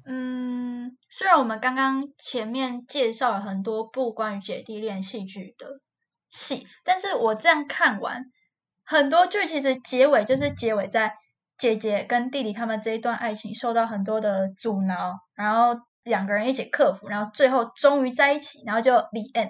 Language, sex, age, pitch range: Chinese, female, 10-29, 220-275 Hz